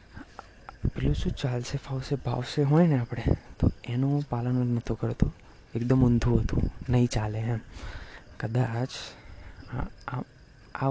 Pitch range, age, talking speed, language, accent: 115-140 Hz, 20-39, 115 wpm, Gujarati, native